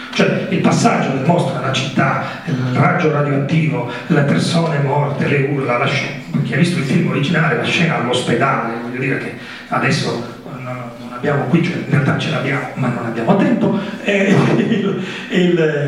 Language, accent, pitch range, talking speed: Italian, native, 135-215 Hz, 175 wpm